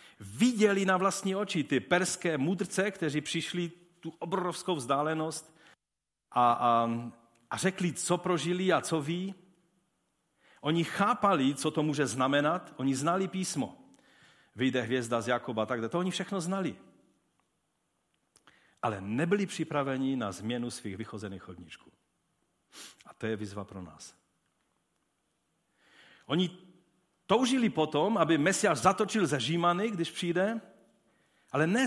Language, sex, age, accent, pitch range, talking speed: Czech, male, 40-59, native, 120-180 Hz, 120 wpm